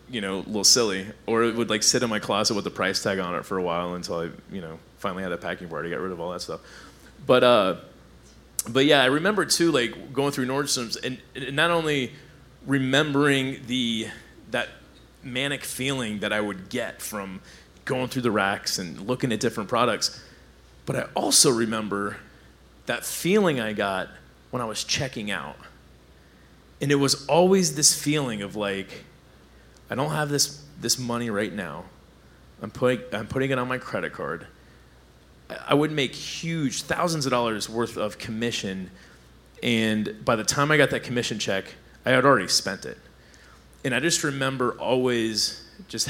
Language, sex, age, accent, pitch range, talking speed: English, male, 30-49, American, 100-135 Hz, 180 wpm